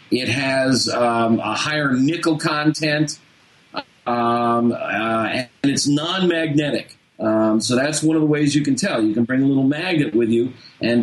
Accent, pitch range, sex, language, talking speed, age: American, 125-165 Hz, male, English, 170 wpm, 40-59